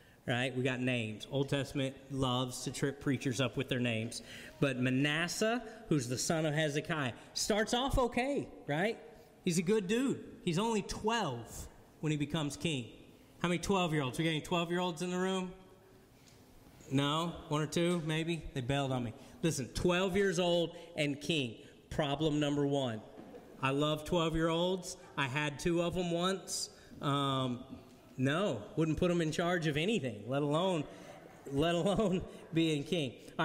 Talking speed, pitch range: 160 wpm, 140-190 Hz